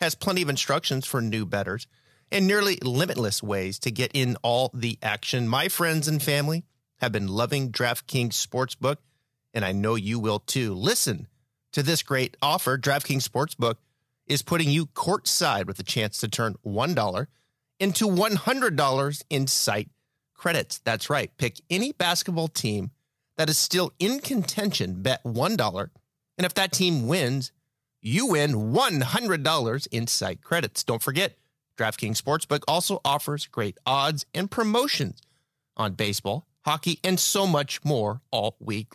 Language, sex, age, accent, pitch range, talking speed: English, male, 30-49, American, 120-155 Hz, 150 wpm